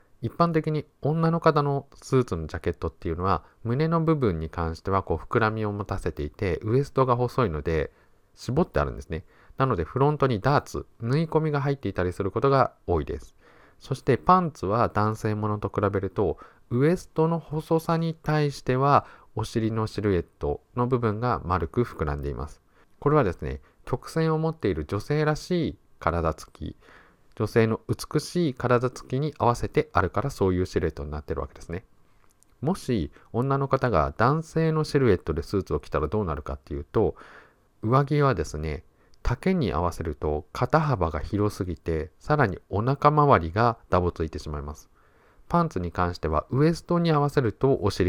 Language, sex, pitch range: Japanese, male, 85-145 Hz